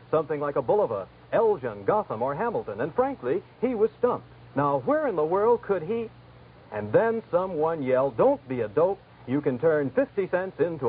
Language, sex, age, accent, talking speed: English, male, 60-79, American, 185 wpm